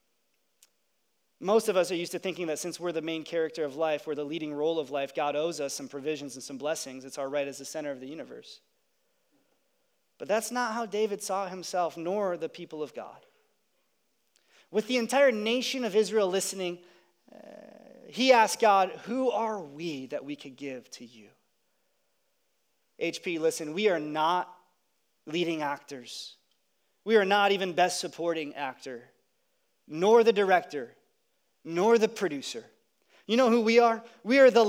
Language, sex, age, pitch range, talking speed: English, male, 30-49, 165-265 Hz, 170 wpm